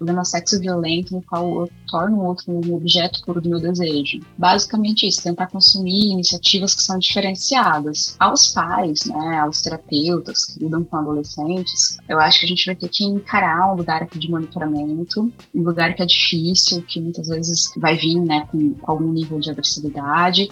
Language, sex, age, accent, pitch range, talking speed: Portuguese, female, 20-39, Brazilian, 160-185 Hz, 180 wpm